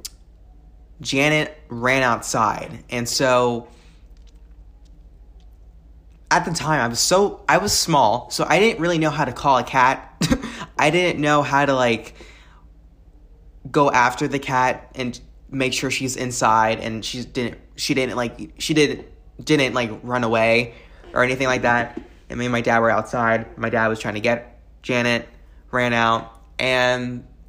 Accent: American